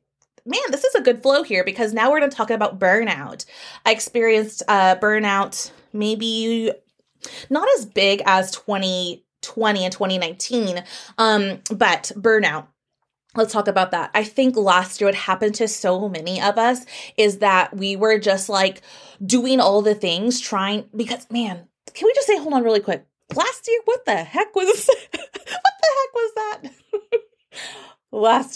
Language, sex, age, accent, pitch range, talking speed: English, female, 20-39, American, 185-235 Hz, 165 wpm